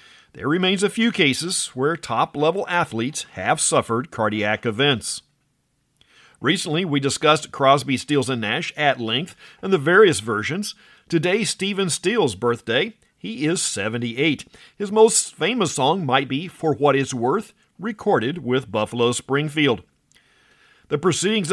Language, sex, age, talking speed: English, male, 50-69, 135 wpm